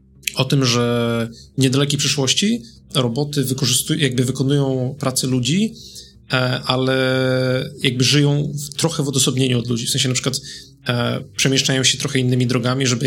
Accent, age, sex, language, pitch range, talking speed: native, 30-49, male, Polish, 125-140 Hz, 145 wpm